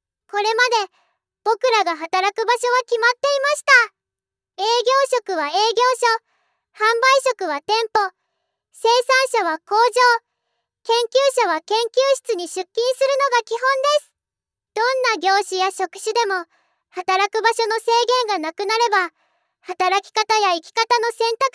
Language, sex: Japanese, male